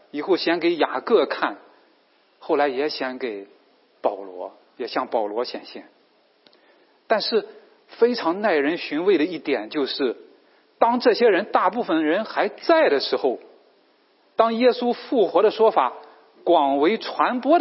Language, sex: English, male